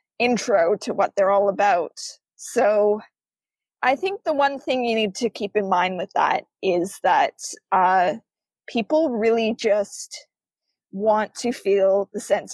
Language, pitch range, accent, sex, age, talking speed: English, 195-245 Hz, American, female, 20-39, 150 wpm